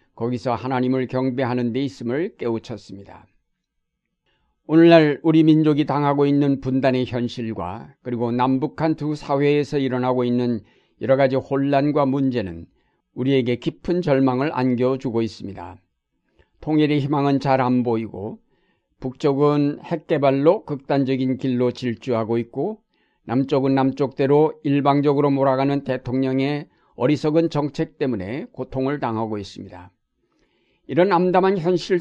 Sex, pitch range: male, 125-150 Hz